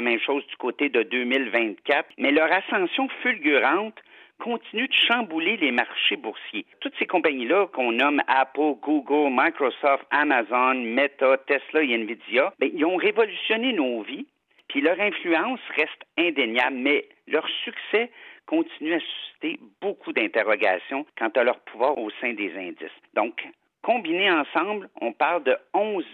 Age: 50-69